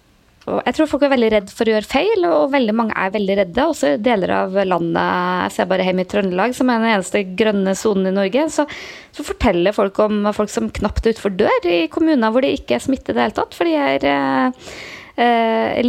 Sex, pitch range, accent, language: female, 200-255 Hz, Swedish, Danish